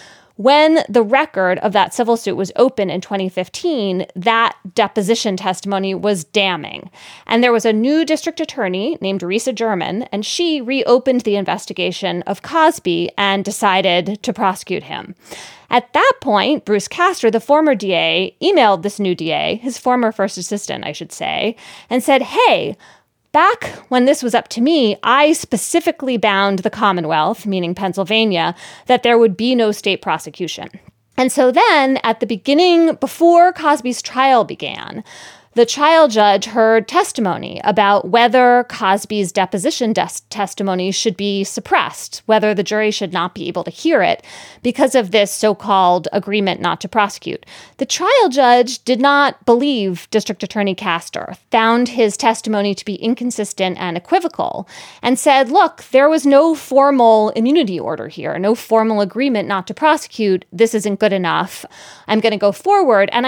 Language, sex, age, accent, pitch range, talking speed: English, female, 20-39, American, 195-260 Hz, 155 wpm